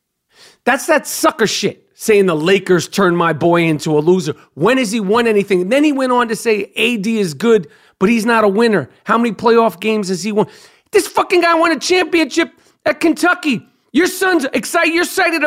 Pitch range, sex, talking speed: 190-270 Hz, male, 200 wpm